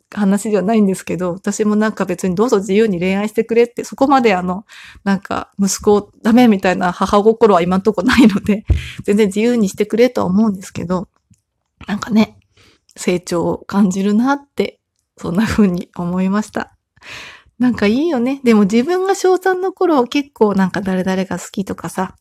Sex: female